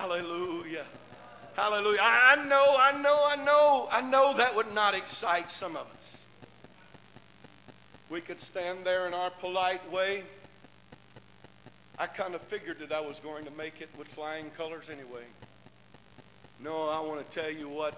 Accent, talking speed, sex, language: American, 155 wpm, male, English